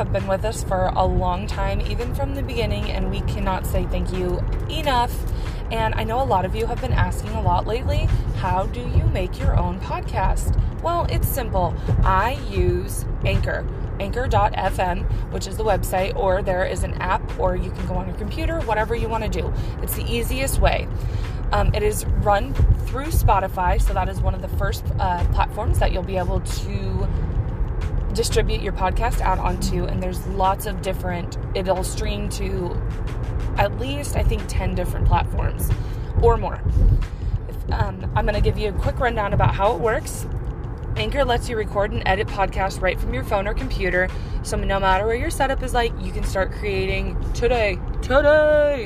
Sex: female